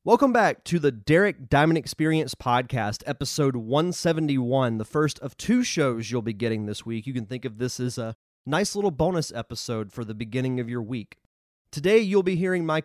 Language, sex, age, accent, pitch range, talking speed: English, male, 30-49, American, 115-150 Hz, 195 wpm